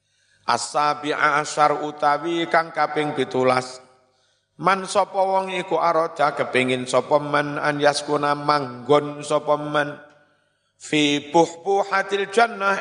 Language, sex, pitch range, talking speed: Indonesian, male, 130-150 Hz, 80 wpm